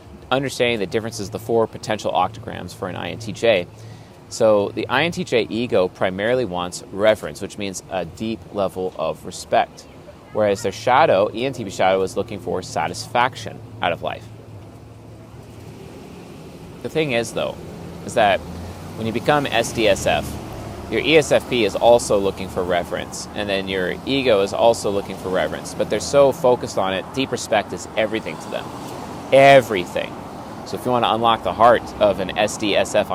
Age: 30-49